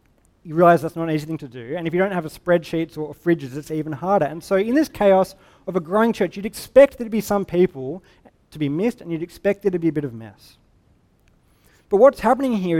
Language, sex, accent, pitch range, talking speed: English, male, Australian, 150-190 Hz, 255 wpm